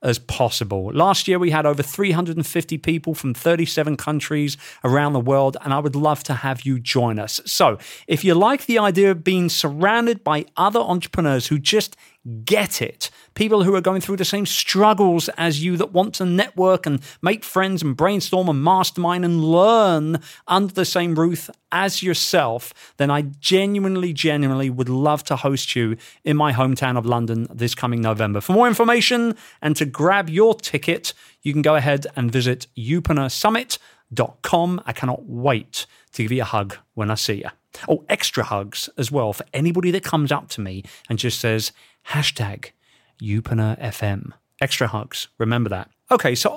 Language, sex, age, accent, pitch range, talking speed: English, male, 40-59, British, 125-185 Hz, 175 wpm